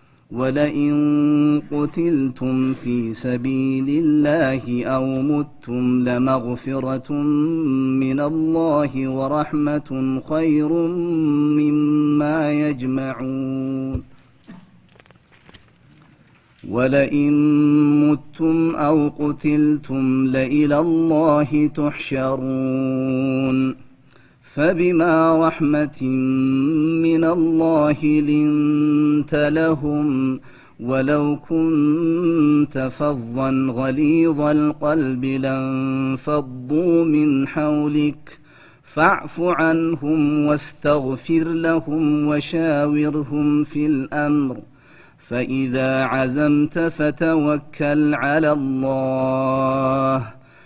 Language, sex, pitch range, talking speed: Amharic, male, 130-150 Hz, 55 wpm